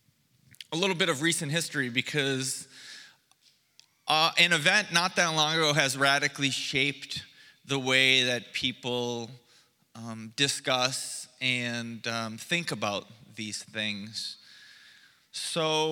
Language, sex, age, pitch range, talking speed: English, male, 30-49, 130-160 Hz, 115 wpm